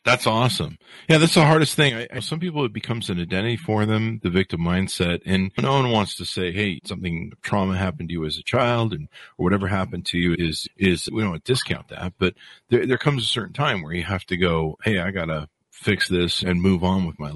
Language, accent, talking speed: English, American, 240 wpm